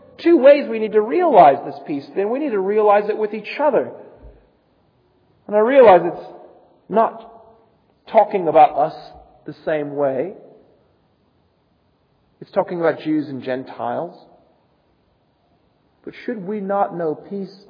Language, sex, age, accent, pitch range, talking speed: English, male, 40-59, American, 140-215 Hz, 135 wpm